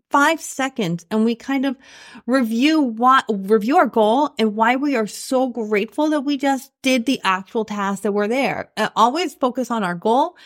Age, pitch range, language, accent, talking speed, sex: 30-49, 215-290 Hz, English, American, 190 wpm, female